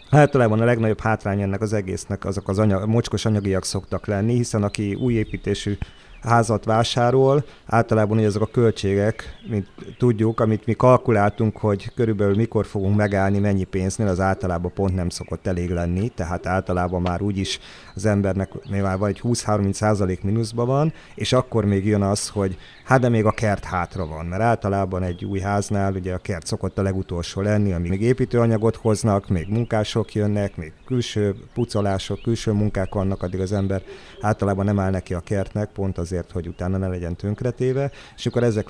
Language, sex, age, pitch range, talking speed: Hungarian, male, 30-49, 95-115 Hz, 175 wpm